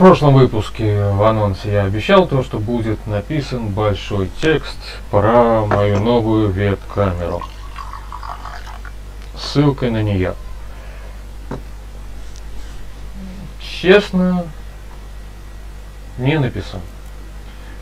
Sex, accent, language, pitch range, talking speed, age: male, native, Russian, 100-125 Hz, 75 wpm, 30-49